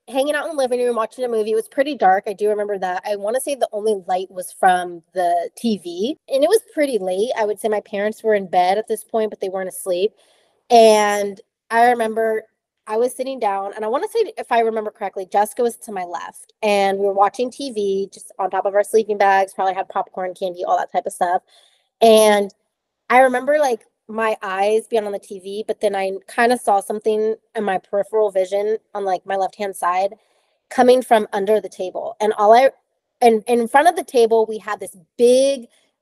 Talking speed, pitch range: 225 wpm, 195-235 Hz